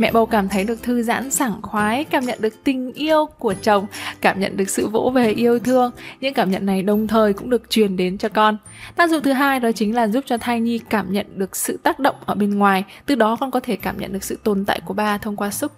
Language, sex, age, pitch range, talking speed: Vietnamese, female, 20-39, 205-260 Hz, 275 wpm